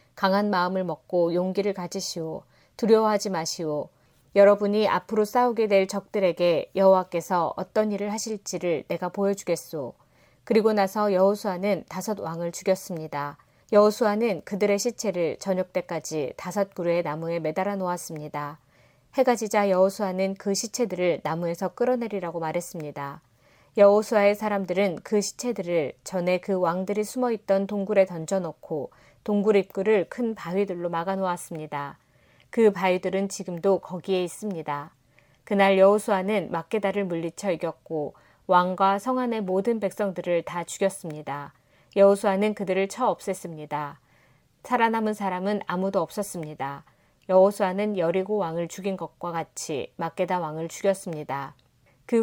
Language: Korean